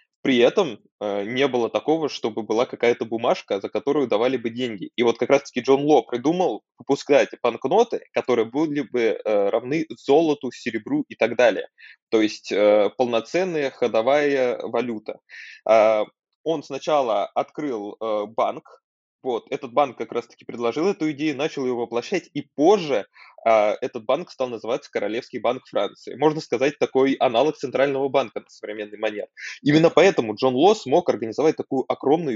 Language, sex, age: Russian, male, 20-39